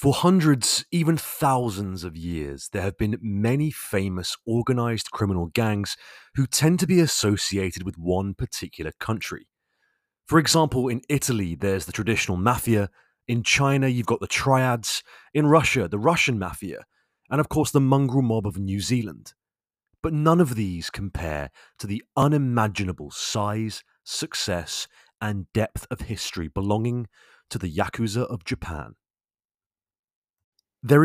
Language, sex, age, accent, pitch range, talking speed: English, male, 30-49, British, 95-135 Hz, 140 wpm